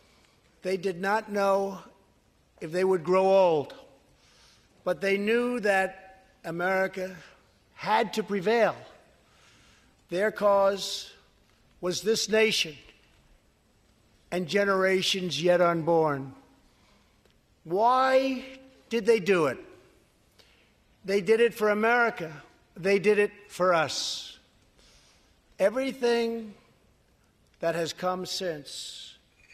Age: 60-79